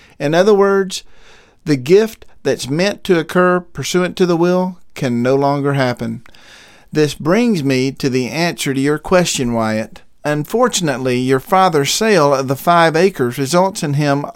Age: 50-69